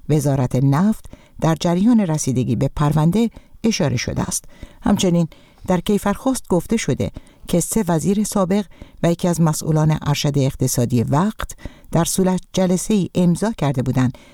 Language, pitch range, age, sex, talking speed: Persian, 135-185 Hz, 60-79, female, 140 wpm